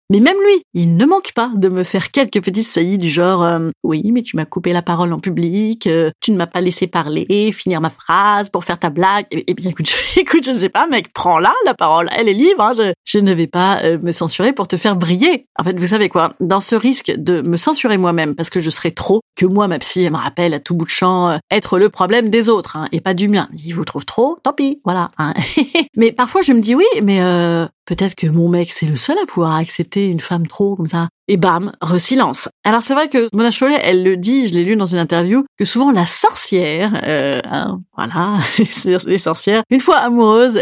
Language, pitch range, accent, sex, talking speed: French, 170-230 Hz, French, female, 255 wpm